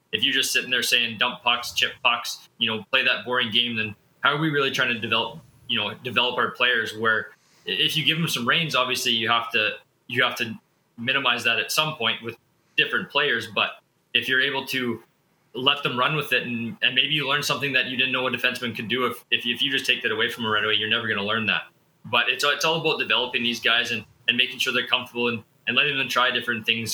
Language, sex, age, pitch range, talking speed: English, male, 20-39, 115-130 Hz, 255 wpm